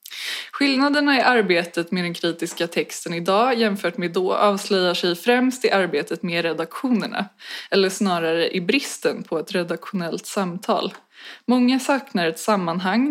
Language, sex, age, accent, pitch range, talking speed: Swedish, female, 20-39, native, 175-225 Hz, 135 wpm